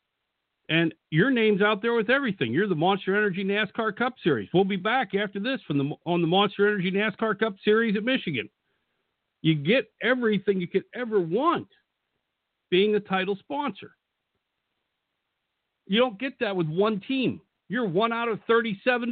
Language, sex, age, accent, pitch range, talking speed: English, male, 50-69, American, 160-210 Hz, 165 wpm